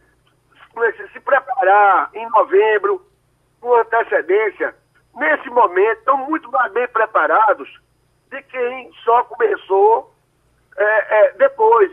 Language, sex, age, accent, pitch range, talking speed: Portuguese, male, 60-79, Brazilian, 225-300 Hz, 90 wpm